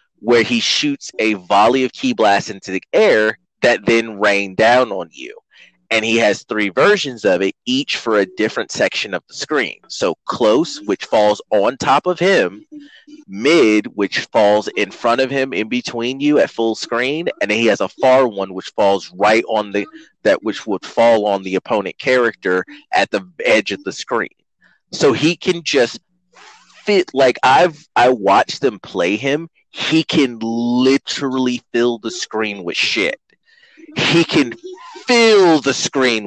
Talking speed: 170 wpm